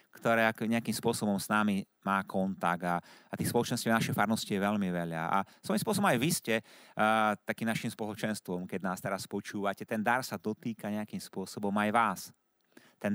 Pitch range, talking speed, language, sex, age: 110-150 Hz, 185 wpm, Slovak, male, 30-49